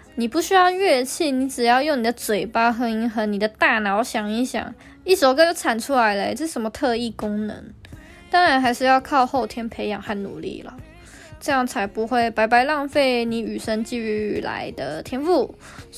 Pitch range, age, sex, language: 225-285 Hz, 10-29, female, Chinese